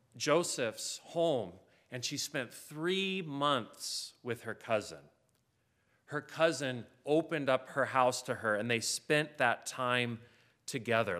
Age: 40-59